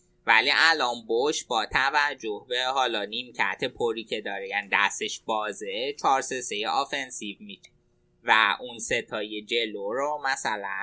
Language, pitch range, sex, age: Persian, 115-150 Hz, male, 20-39